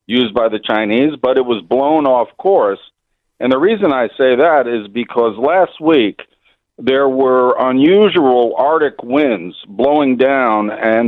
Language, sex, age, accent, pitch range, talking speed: English, male, 50-69, American, 115-150 Hz, 150 wpm